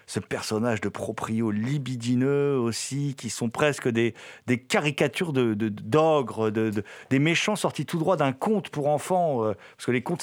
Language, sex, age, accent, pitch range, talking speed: French, male, 50-69, French, 125-190 Hz, 175 wpm